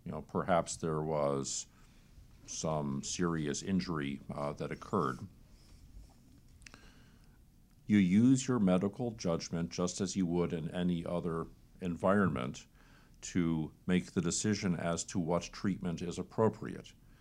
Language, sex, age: English, male, 50-69